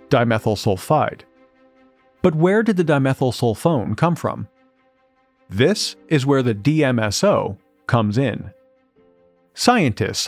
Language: English